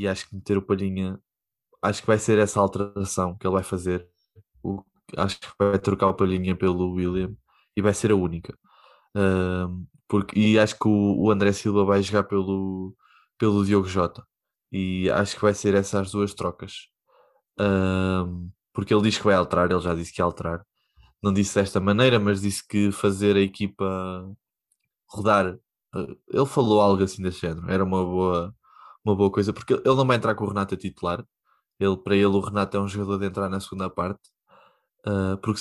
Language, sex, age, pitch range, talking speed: Portuguese, male, 20-39, 95-105 Hz, 190 wpm